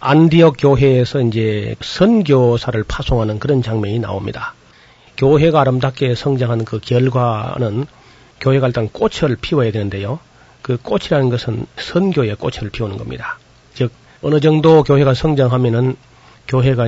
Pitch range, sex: 115-145 Hz, male